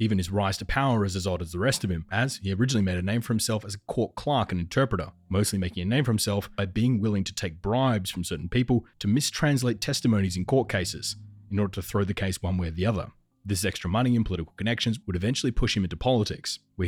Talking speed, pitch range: 255 wpm, 95-115 Hz